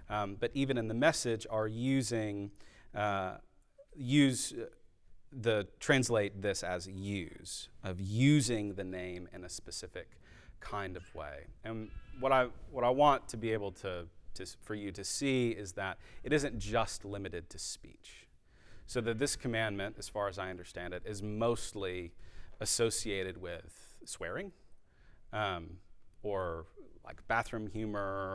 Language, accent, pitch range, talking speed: English, American, 90-115 Hz, 145 wpm